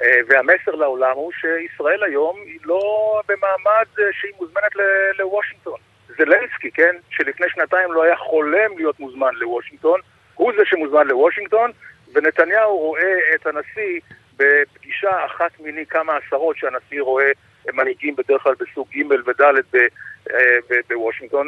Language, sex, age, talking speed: Hebrew, male, 50-69, 125 wpm